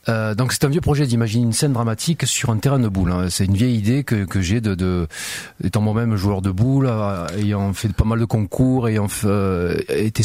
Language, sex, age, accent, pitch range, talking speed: French, male, 40-59, French, 95-120 Hz, 240 wpm